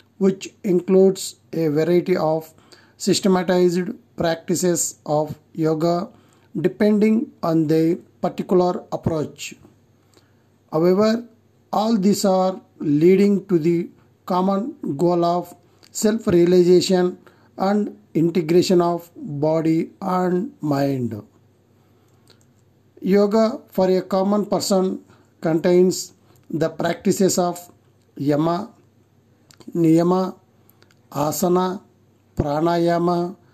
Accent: native